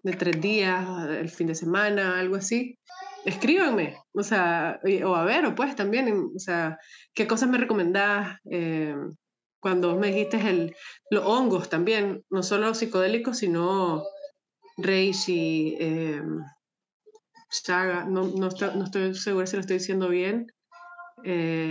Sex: female